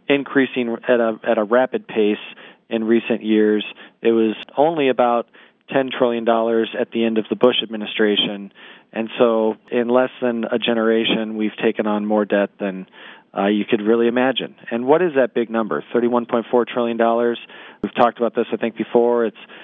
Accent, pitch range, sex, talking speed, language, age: American, 110-125 Hz, male, 170 wpm, English, 40-59